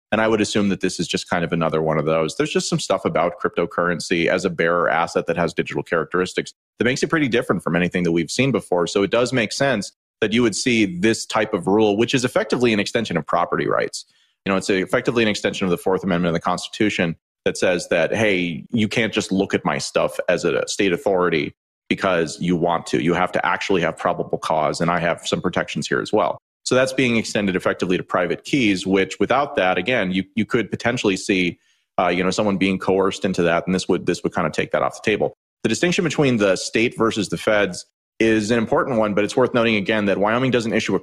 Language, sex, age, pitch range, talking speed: English, male, 30-49, 90-110 Hz, 245 wpm